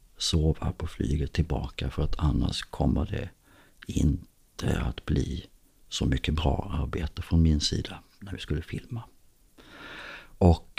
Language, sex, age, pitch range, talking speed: Swedish, male, 50-69, 75-95 Hz, 135 wpm